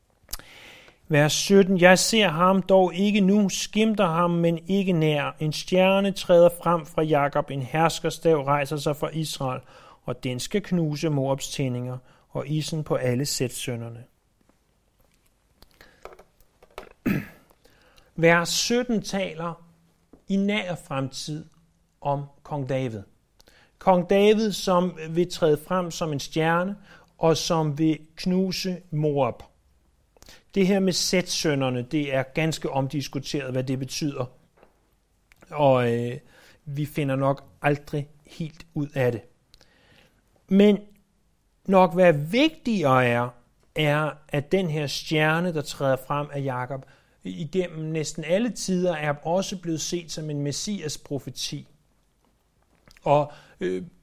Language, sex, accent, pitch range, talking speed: Danish, male, native, 140-180 Hz, 120 wpm